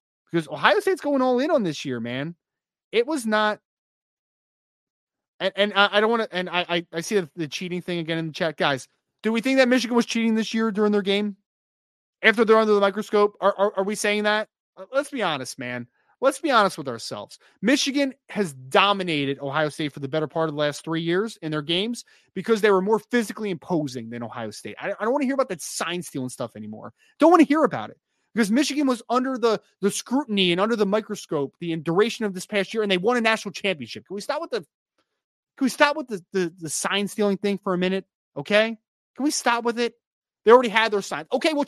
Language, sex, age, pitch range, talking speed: English, male, 20-39, 175-260 Hz, 225 wpm